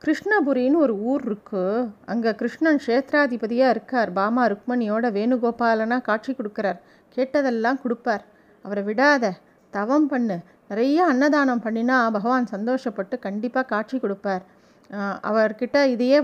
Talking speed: 105 wpm